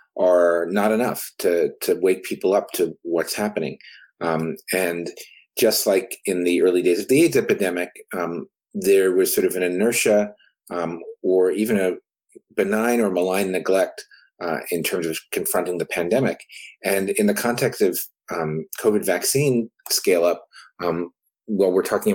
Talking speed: 160 wpm